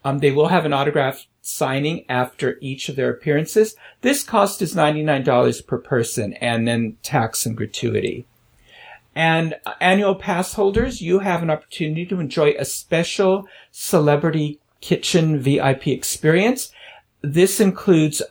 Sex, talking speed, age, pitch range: male, 140 wpm, 50-69, 140-185 Hz